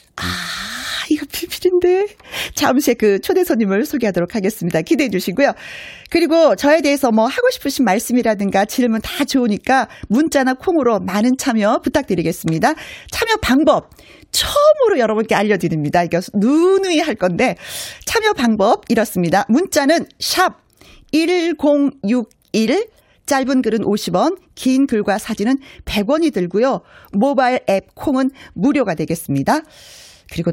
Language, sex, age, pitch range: Korean, female, 40-59, 195-300 Hz